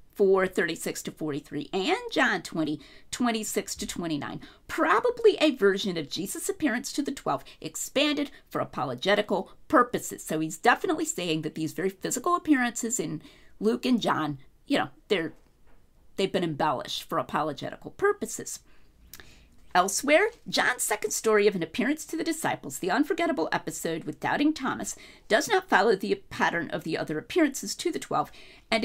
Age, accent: 40-59, American